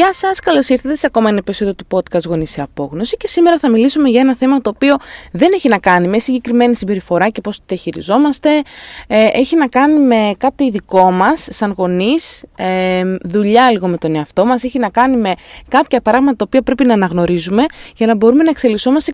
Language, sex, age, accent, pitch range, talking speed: Greek, female, 20-39, native, 190-260 Hz, 200 wpm